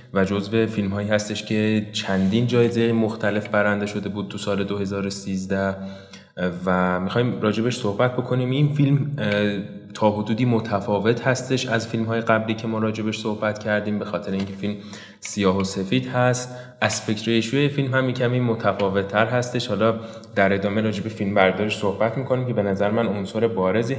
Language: Persian